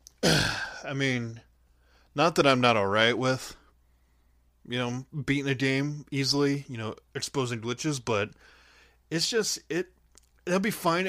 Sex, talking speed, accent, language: male, 135 wpm, American, English